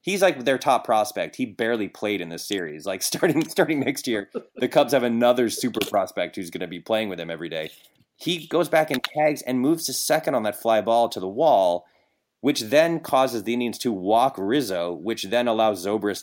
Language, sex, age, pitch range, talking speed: English, male, 20-39, 100-140 Hz, 220 wpm